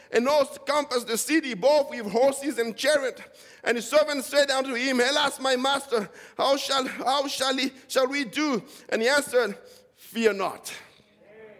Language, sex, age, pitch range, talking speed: English, male, 50-69, 280-350 Hz, 165 wpm